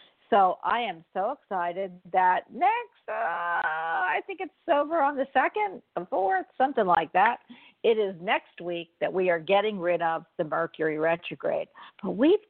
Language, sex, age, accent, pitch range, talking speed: English, female, 50-69, American, 170-250 Hz, 170 wpm